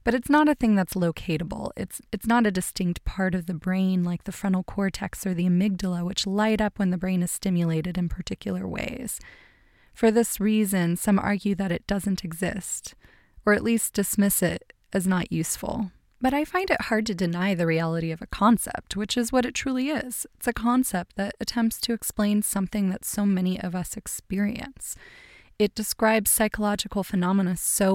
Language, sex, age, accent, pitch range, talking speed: English, female, 20-39, American, 185-225 Hz, 190 wpm